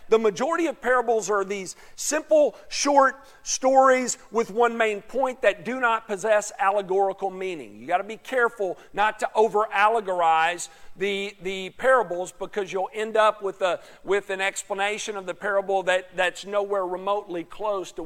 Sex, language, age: male, English, 50-69